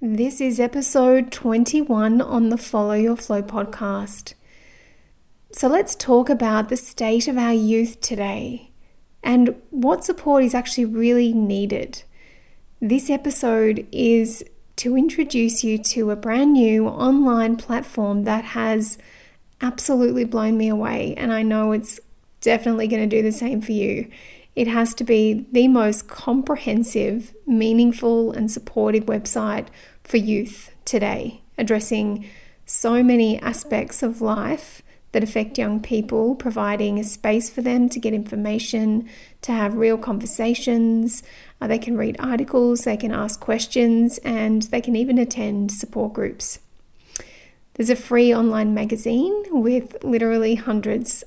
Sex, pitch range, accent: female, 220-245 Hz, Australian